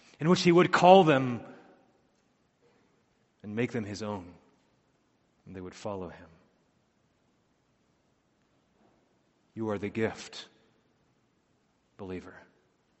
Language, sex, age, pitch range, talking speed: English, male, 30-49, 115-145 Hz, 95 wpm